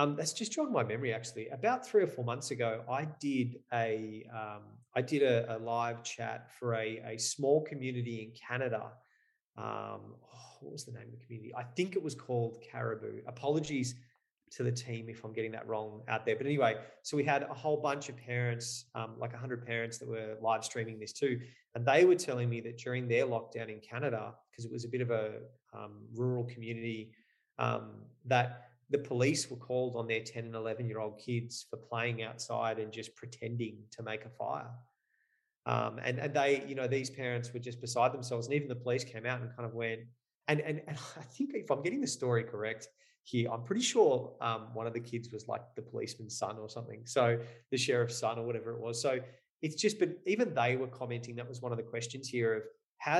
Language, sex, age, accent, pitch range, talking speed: English, male, 30-49, Australian, 115-130 Hz, 215 wpm